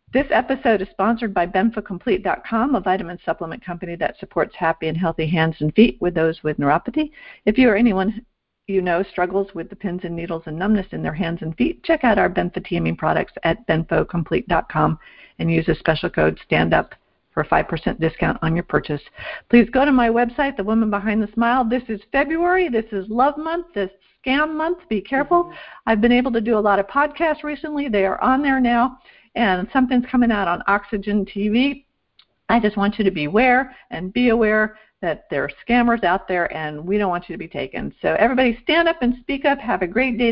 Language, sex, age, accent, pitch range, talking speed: English, female, 50-69, American, 185-260 Hz, 210 wpm